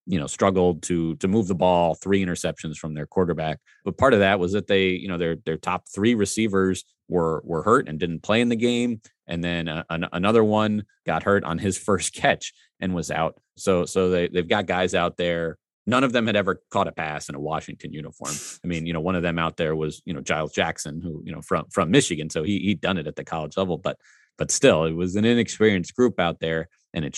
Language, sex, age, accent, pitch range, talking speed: English, male, 30-49, American, 85-100 Hz, 245 wpm